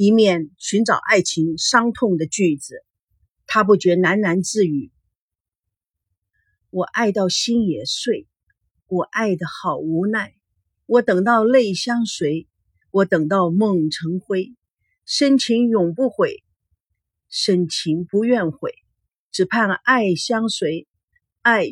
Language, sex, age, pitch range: Chinese, female, 50-69, 160-235 Hz